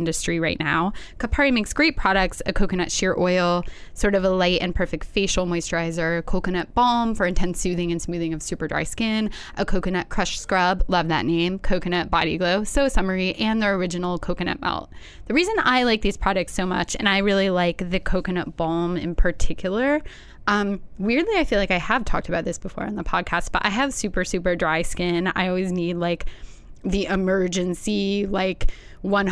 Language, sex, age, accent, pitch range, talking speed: English, female, 10-29, American, 175-200 Hz, 190 wpm